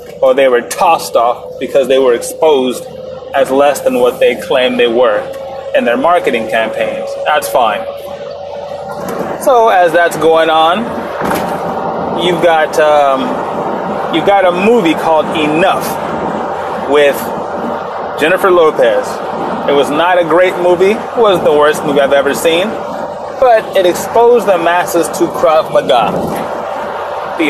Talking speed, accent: 135 wpm, American